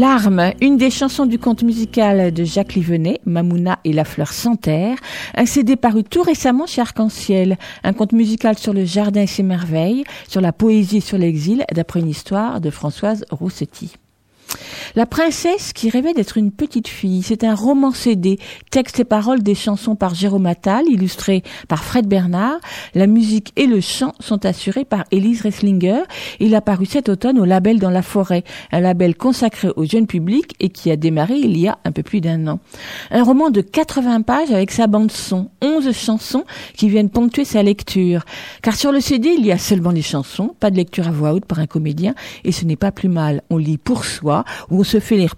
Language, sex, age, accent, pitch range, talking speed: French, female, 50-69, French, 180-240 Hz, 205 wpm